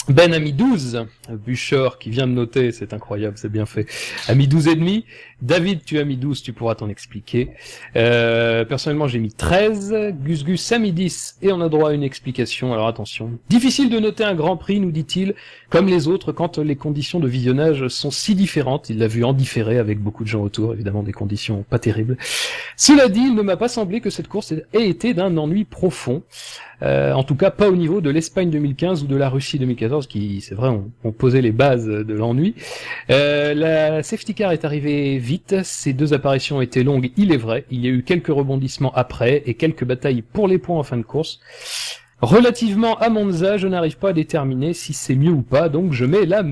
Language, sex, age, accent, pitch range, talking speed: French, male, 40-59, French, 125-180 Hz, 215 wpm